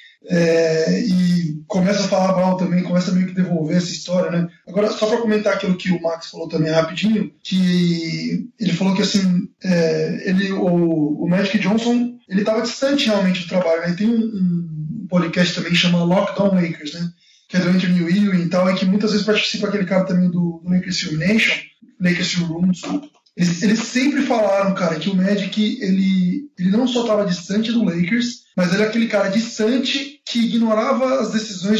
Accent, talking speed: Brazilian, 190 wpm